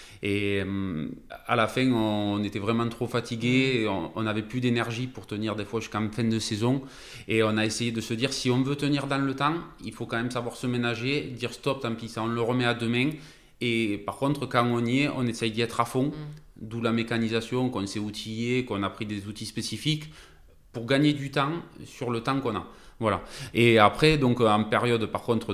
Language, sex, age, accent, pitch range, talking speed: French, male, 20-39, French, 105-125 Hz, 220 wpm